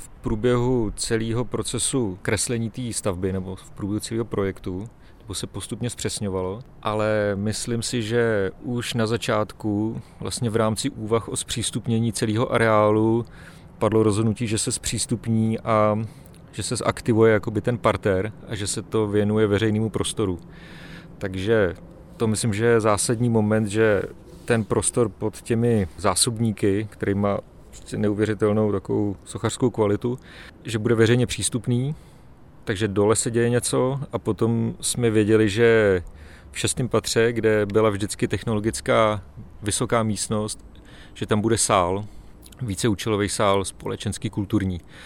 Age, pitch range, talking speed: 40-59, 105-115 Hz, 130 wpm